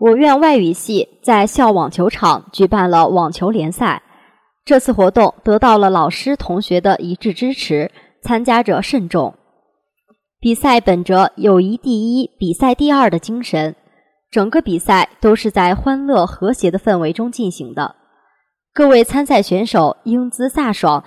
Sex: male